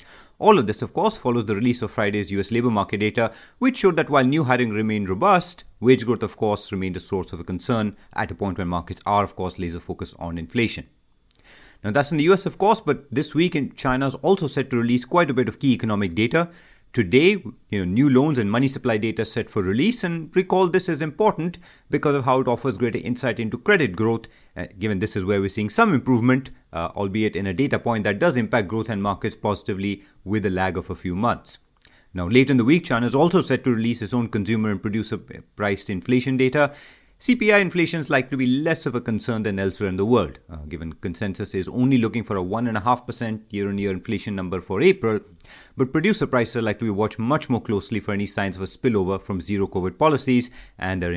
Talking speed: 225 wpm